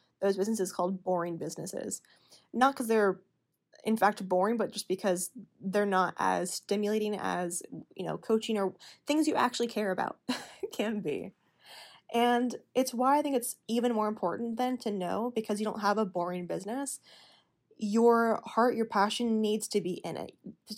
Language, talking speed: English, 175 wpm